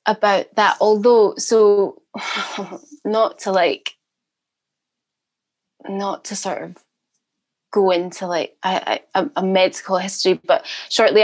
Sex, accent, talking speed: female, British, 100 wpm